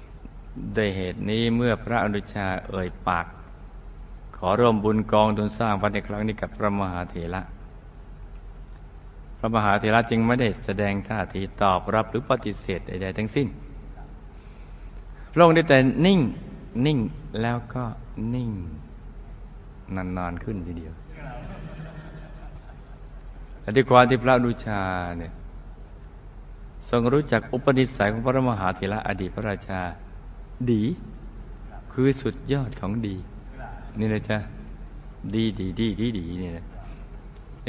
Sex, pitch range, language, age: male, 95-120 Hz, Thai, 60-79